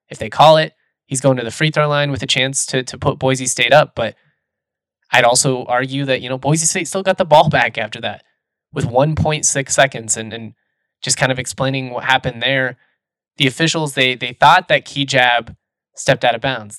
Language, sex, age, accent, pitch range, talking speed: English, male, 20-39, American, 120-140 Hz, 210 wpm